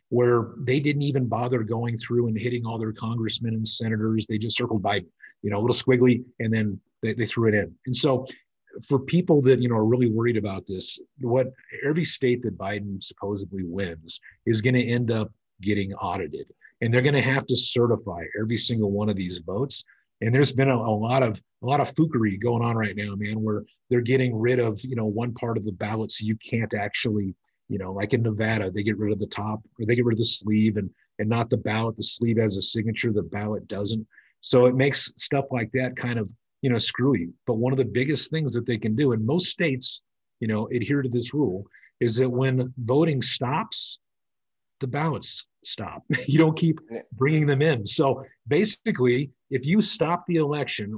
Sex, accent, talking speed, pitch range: male, American, 215 wpm, 110-130 Hz